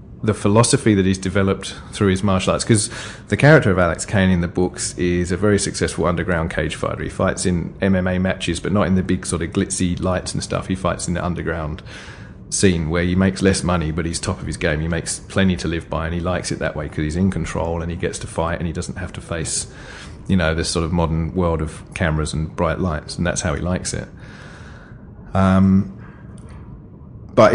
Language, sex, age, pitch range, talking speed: English, male, 30-49, 85-100 Hz, 230 wpm